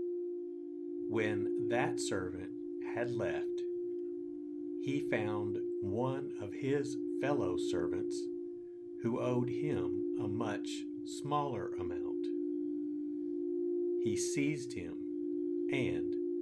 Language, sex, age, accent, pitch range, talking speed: English, male, 50-69, American, 325-345 Hz, 85 wpm